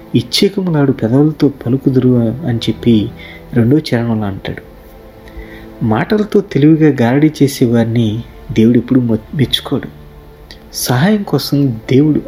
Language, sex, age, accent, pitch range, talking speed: Telugu, male, 30-49, native, 110-150 Hz, 95 wpm